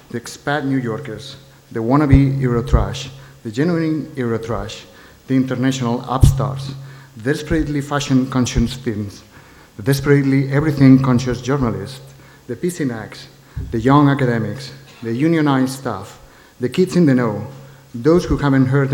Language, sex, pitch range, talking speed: German, male, 120-140 Hz, 110 wpm